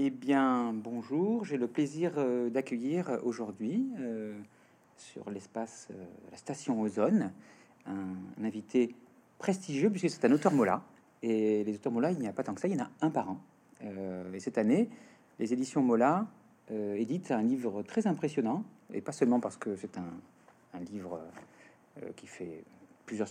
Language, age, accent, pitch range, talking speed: French, 40-59, French, 105-150 Hz, 170 wpm